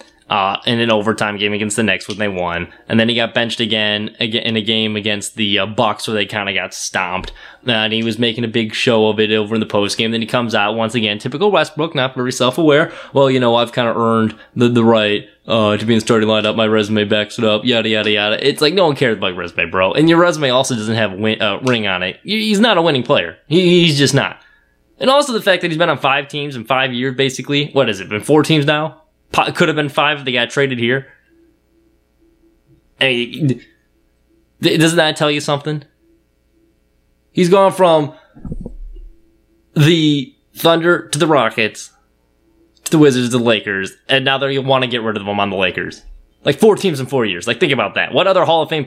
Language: English